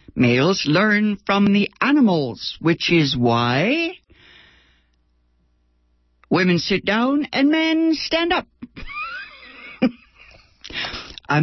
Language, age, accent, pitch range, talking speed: English, 60-79, American, 135-210 Hz, 85 wpm